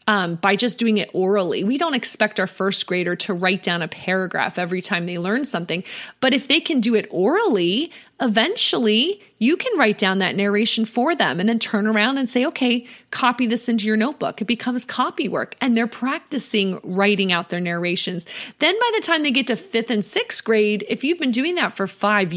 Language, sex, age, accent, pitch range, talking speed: English, female, 20-39, American, 200-260 Hz, 210 wpm